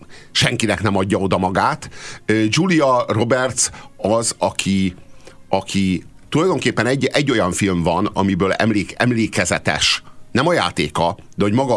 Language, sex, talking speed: Hungarian, male, 120 wpm